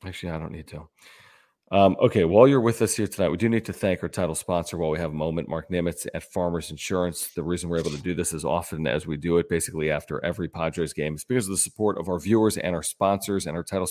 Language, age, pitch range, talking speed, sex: English, 40-59, 85-105 Hz, 270 wpm, male